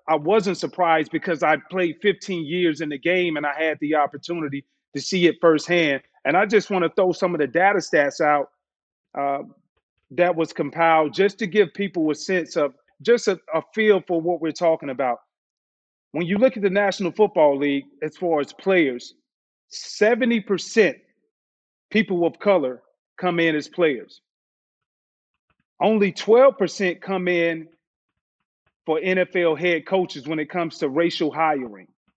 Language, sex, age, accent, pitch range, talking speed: English, male, 30-49, American, 155-190 Hz, 160 wpm